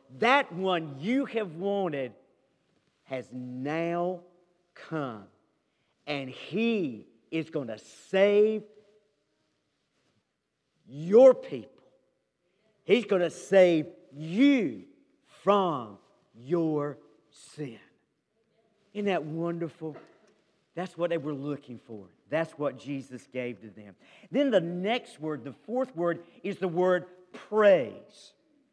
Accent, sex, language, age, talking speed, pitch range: American, male, English, 50-69, 105 wpm, 155-205 Hz